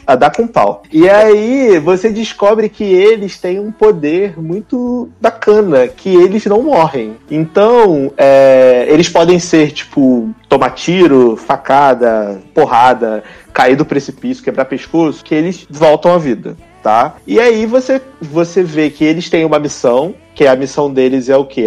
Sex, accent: male, Brazilian